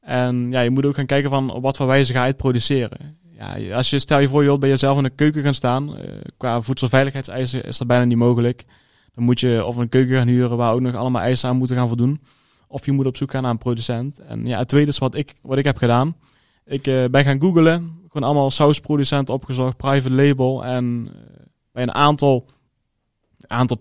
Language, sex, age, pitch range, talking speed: Dutch, male, 20-39, 120-140 Hz, 225 wpm